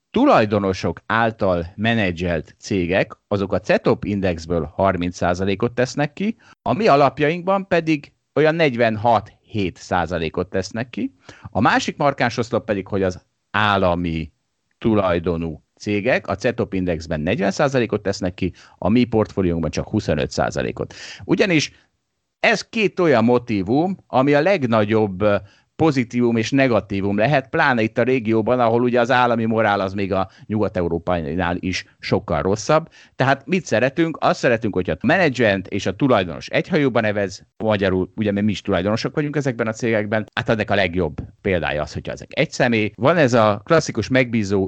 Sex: male